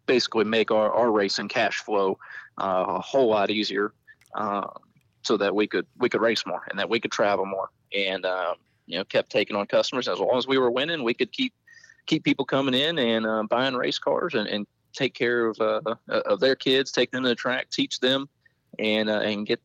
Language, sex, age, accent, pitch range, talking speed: English, male, 30-49, American, 100-120 Hz, 225 wpm